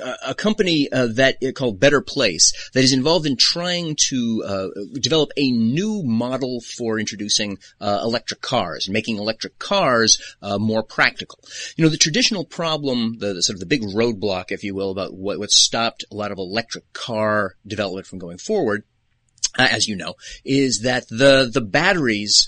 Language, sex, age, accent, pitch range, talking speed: English, male, 30-49, American, 100-140 Hz, 180 wpm